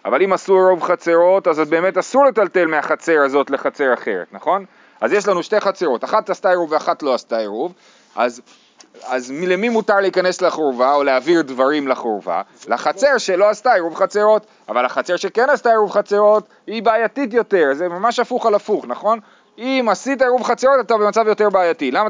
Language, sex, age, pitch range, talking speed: Hebrew, male, 30-49, 170-225 Hz, 180 wpm